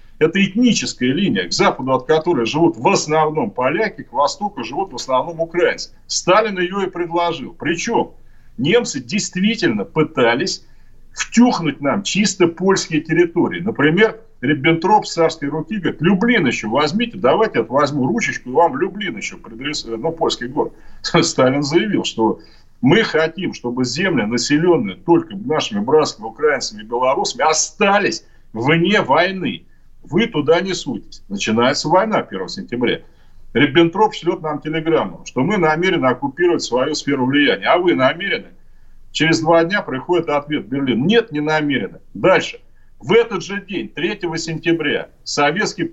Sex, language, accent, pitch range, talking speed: male, Russian, native, 150-200 Hz, 140 wpm